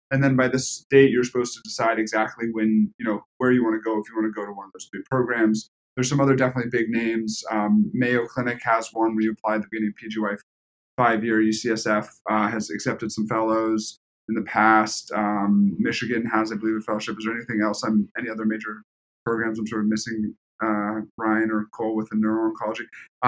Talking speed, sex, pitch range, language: 215 wpm, male, 105-120 Hz, English